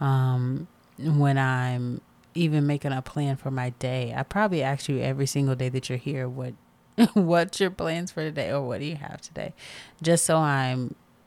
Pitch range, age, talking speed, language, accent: 130-150 Hz, 30-49, 185 wpm, English, American